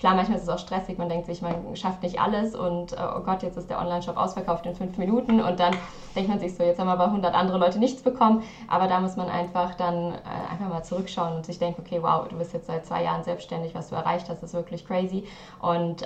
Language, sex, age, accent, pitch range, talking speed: German, female, 20-39, German, 170-185 Hz, 260 wpm